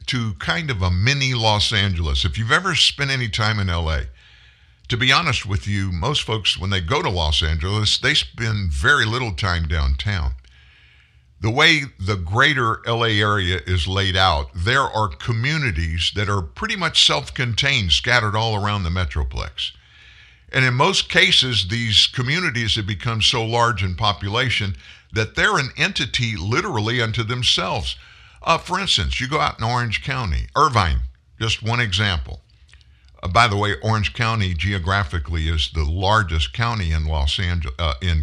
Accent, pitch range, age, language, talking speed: American, 85-120 Hz, 50-69, English, 165 wpm